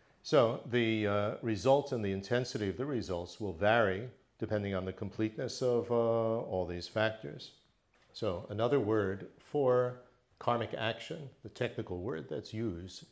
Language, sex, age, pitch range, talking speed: English, male, 50-69, 100-125 Hz, 145 wpm